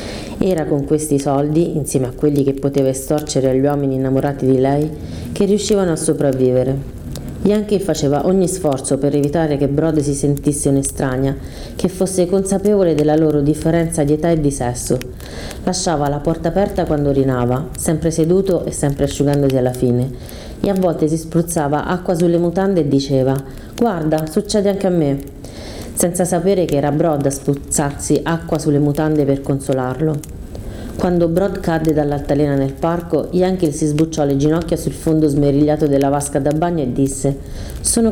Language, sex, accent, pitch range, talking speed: Italian, female, native, 140-175 Hz, 160 wpm